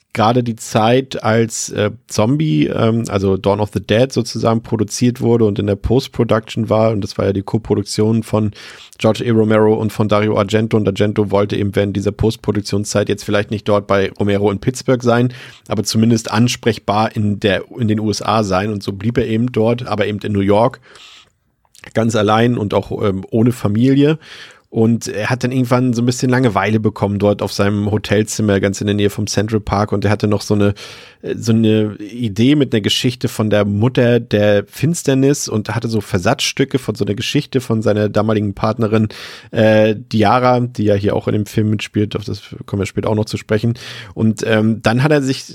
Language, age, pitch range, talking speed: German, 40-59, 105-125 Hz, 200 wpm